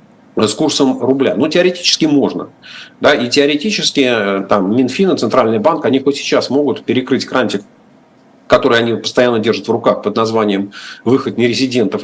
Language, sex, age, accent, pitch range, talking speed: Russian, male, 50-69, native, 115-165 Hz, 145 wpm